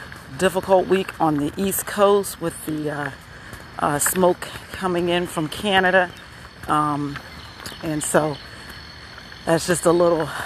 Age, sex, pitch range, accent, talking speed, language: 40-59, female, 140-190 Hz, American, 125 wpm, English